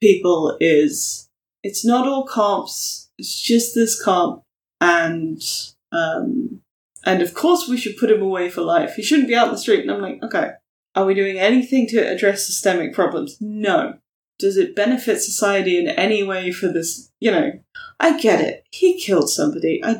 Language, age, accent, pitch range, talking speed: English, 20-39, British, 180-290 Hz, 180 wpm